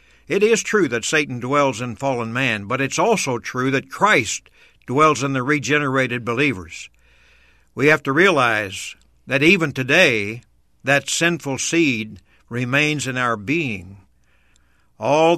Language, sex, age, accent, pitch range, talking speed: English, male, 60-79, American, 120-160 Hz, 135 wpm